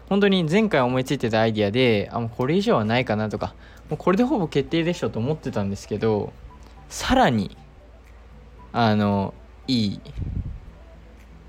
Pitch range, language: 90-130 Hz, Japanese